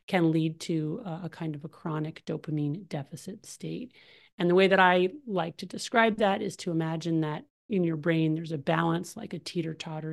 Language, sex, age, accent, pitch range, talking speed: English, male, 40-59, American, 160-200 Hz, 195 wpm